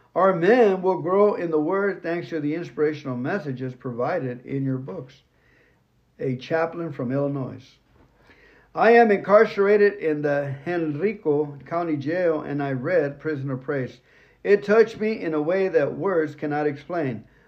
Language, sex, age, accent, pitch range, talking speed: English, male, 60-79, American, 135-170 Hz, 150 wpm